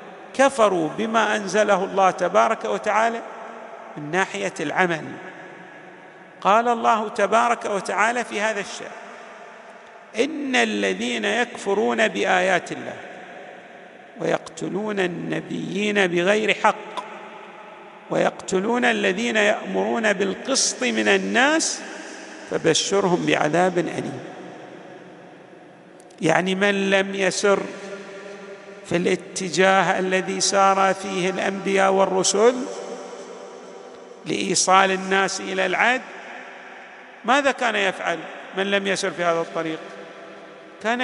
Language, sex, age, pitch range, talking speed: Arabic, male, 50-69, 185-235 Hz, 85 wpm